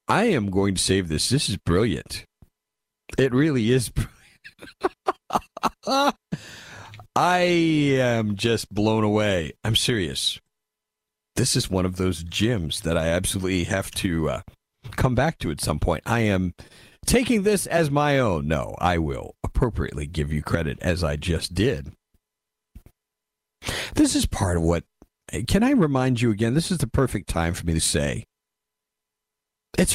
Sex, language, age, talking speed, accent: male, English, 50-69, 150 wpm, American